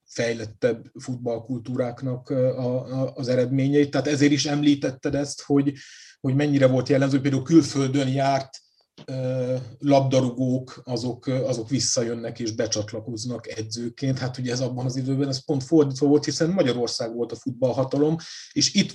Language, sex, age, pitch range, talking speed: Hungarian, male, 30-49, 115-145 Hz, 135 wpm